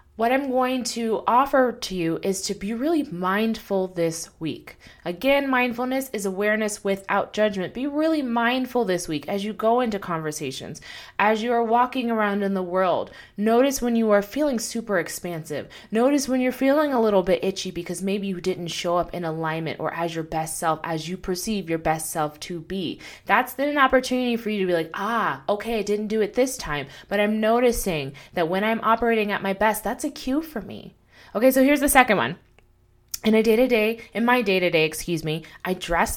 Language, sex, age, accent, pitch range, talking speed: English, female, 20-39, American, 165-240 Hz, 200 wpm